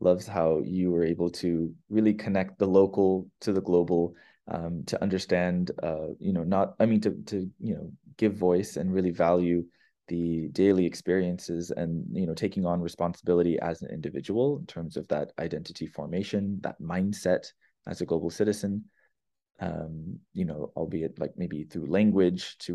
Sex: male